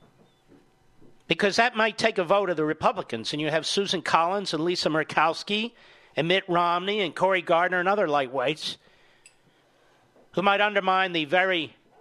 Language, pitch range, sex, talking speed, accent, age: English, 165-225 Hz, male, 155 wpm, American, 50-69